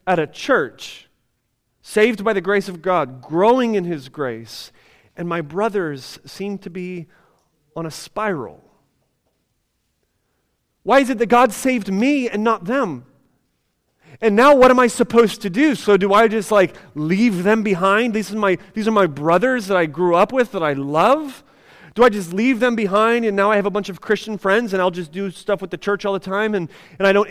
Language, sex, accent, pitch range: English, male, American, 180-235 Hz